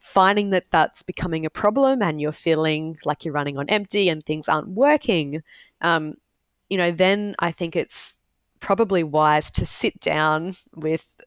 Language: English